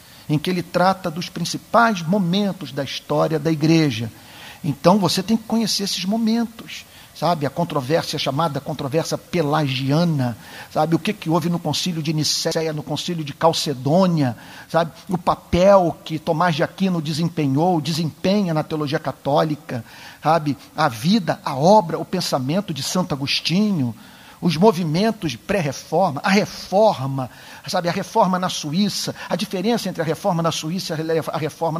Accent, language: Brazilian, Portuguese